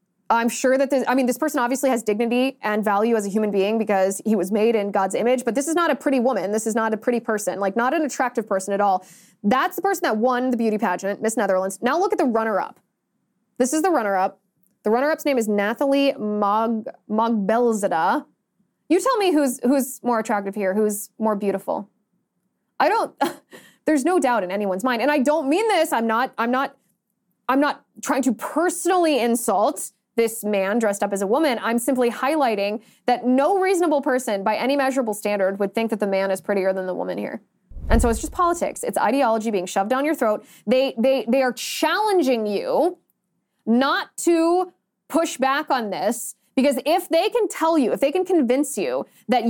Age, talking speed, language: 20-39, 200 wpm, English